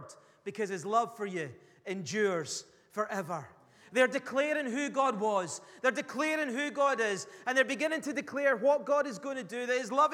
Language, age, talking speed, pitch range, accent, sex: English, 30-49, 185 wpm, 185-265 Hz, British, male